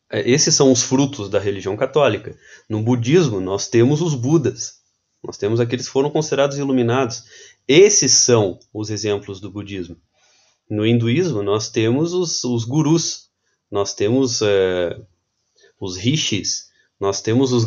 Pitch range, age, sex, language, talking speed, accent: 105-140 Hz, 20-39, male, Portuguese, 135 wpm, Brazilian